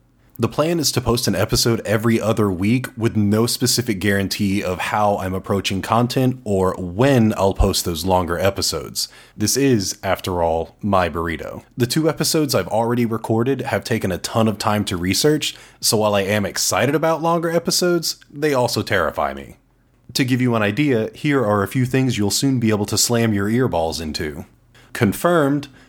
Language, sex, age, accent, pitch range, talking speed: English, male, 30-49, American, 100-130 Hz, 180 wpm